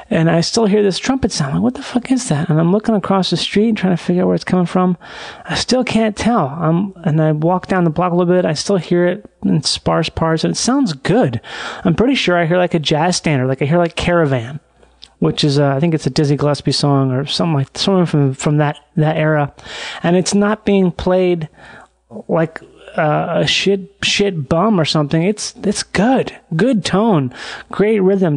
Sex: male